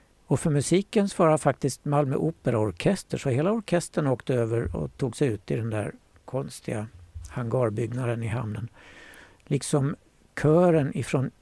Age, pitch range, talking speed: 60-79, 115-140 Hz, 145 wpm